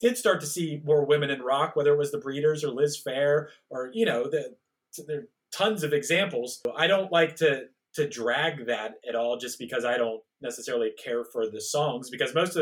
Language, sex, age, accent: English, male, 30-49, American